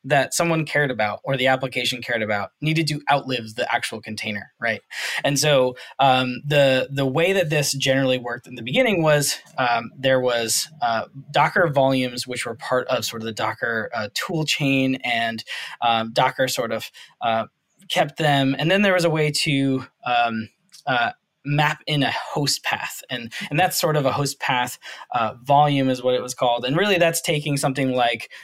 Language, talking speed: English, 190 wpm